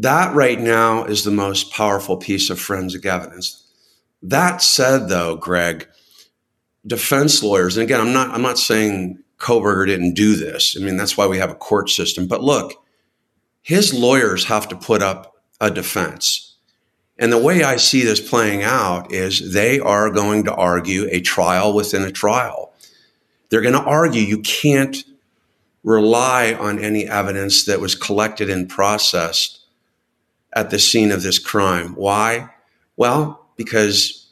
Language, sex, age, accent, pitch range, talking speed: English, male, 50-69, American, 95-110 Hz, 155 wpm